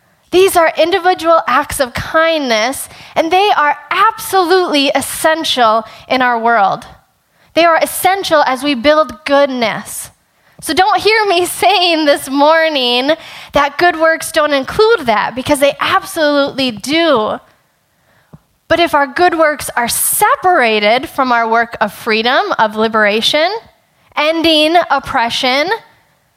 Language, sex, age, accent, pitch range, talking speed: English, female, 10-29, American, 270-350 Hz, 125 wpm